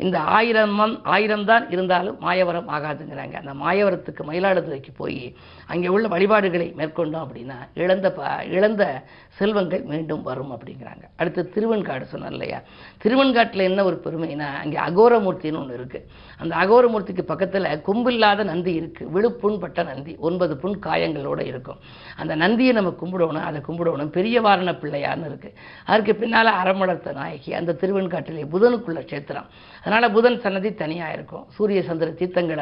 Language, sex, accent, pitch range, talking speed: Tamil, female, native, 160-205 Hz, 130 wpm